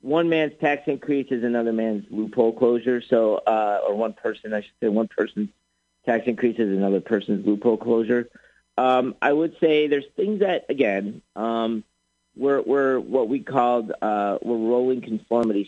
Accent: American